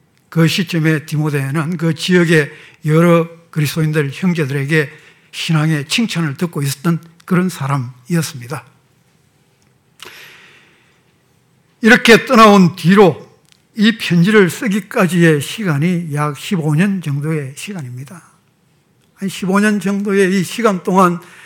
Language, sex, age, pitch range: Korean, male, 60-79, 155-205 Hz